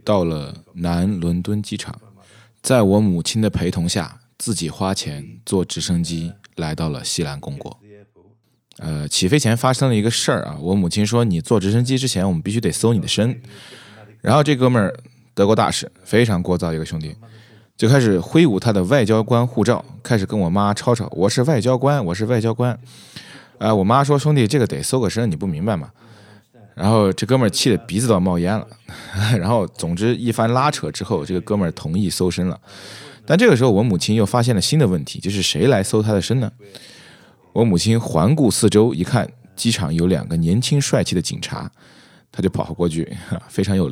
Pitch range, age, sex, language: 90-120 Hz, 20-39, male, Chinese